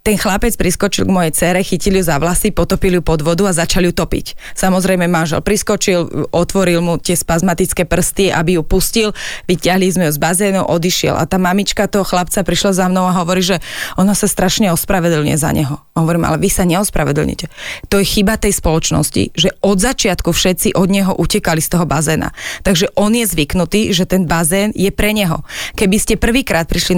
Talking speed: 195 wpm